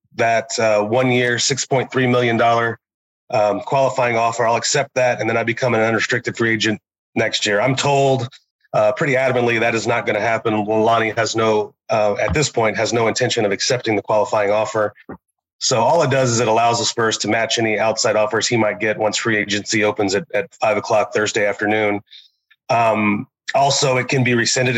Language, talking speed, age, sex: English, 195 wpm, 30-49, male